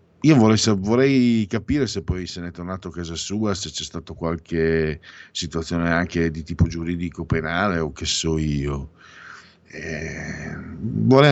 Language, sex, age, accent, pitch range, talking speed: Italian, male, 50-69, native, 80-110 Hz, 155 wpm